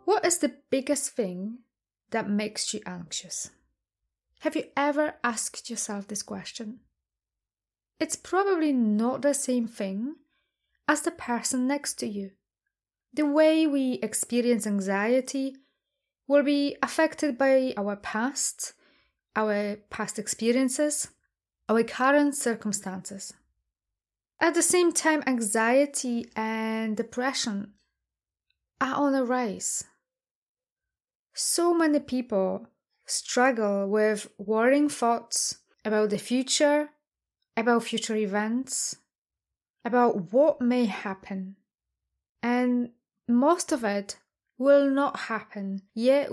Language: English